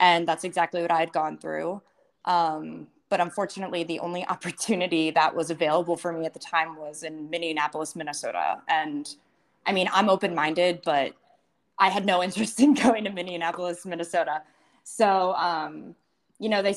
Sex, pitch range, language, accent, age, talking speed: female, 165-190 Hz, English, American, 20-39, 170 wpm